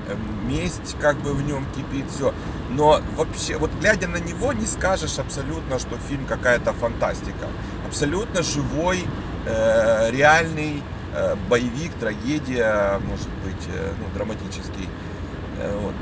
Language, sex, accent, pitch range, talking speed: Ukrainian, male, native, 100-150 Hz, 125 wpm